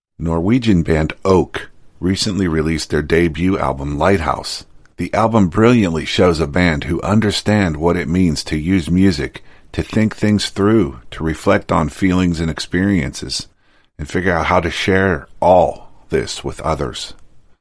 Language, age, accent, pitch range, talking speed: English, 50-69, American, 75-95 Hz, 145 wpm